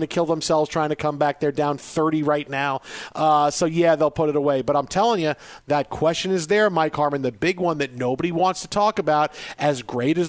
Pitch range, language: 150-185 Hz, English